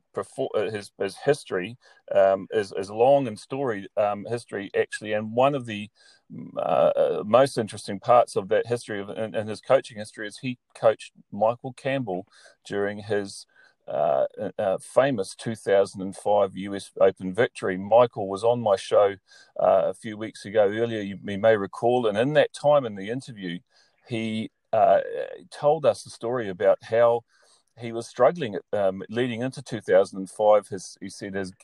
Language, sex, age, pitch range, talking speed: English, male, 40-59, 100-120 Hz, 160 wpm